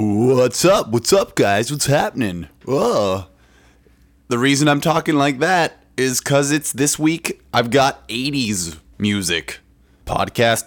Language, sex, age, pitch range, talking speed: English, male, 20-39, 85-125 Hz, 135 wpm